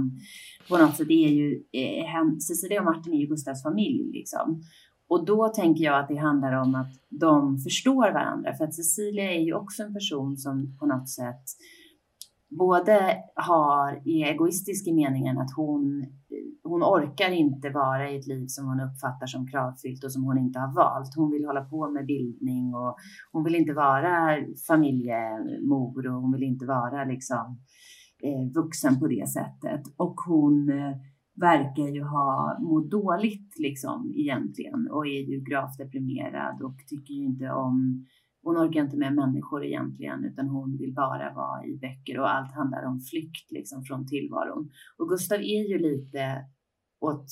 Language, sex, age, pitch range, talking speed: English, female, 30-49, 135-175 Hz, 165 wpm